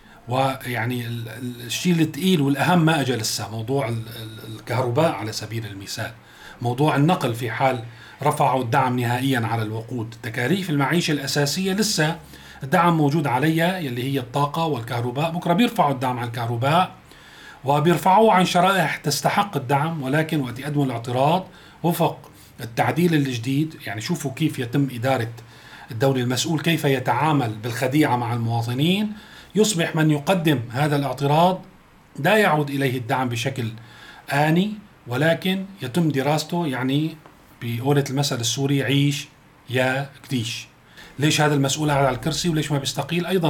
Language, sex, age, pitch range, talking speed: Arabic, male, 40-59, 125-165 Hz, 125 wpm